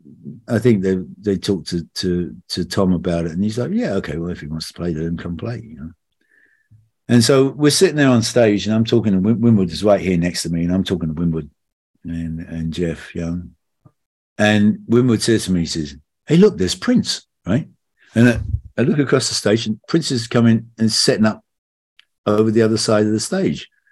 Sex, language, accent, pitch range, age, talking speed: male, English, British, 90-120 Hz, 50-69, 220 wpm